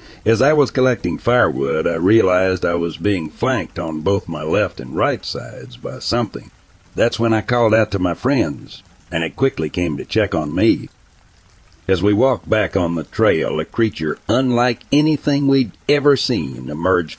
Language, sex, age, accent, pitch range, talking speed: English, male, 60-79, American, 85-120 Hz, 180 wpm